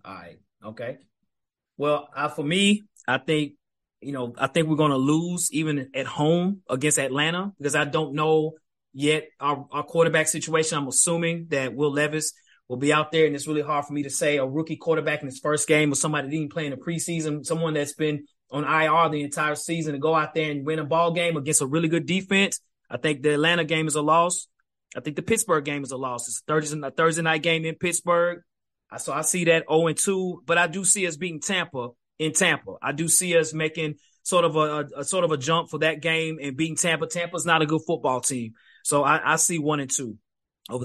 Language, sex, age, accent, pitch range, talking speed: English, male, 20-39, American, 150-175 Hz, 230 wpm